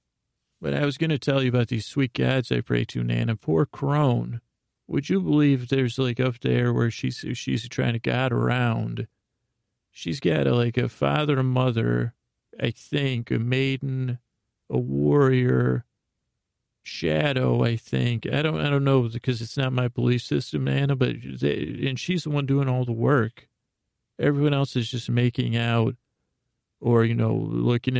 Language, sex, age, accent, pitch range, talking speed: English, male, 40-59, American, 110-135 Hz, 170 wpm